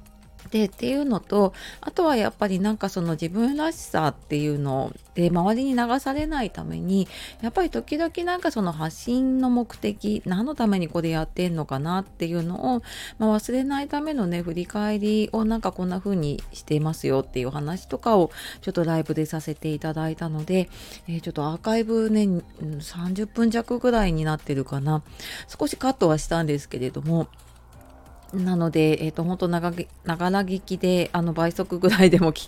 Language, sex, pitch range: Japanese, female, 155-215 Hz